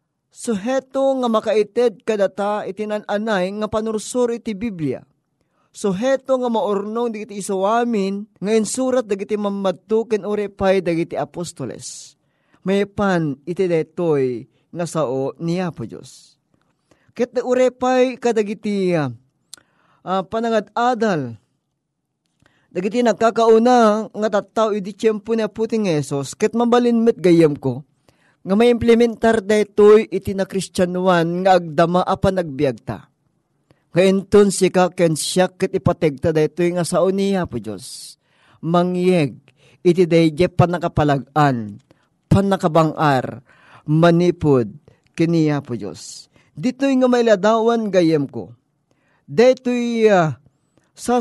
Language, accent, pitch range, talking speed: Filipino, native, 155-220 Hz, 100 wpm